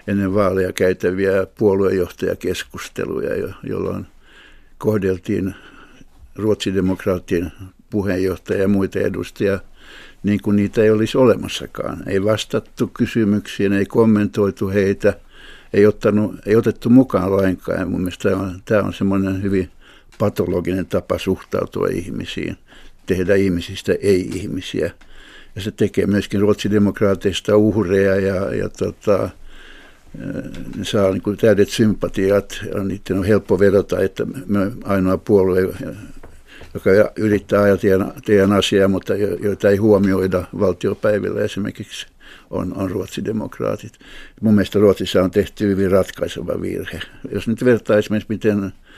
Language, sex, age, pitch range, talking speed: Finnish, male, 60-79, 95-105 Hz, 115 wpm